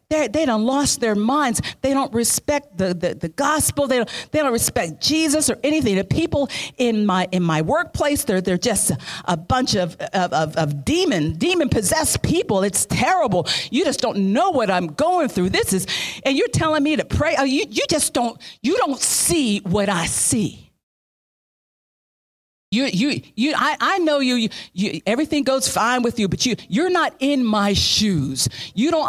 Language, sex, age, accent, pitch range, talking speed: English, female, 50-69, American, 185-285 Hz, 195 wpm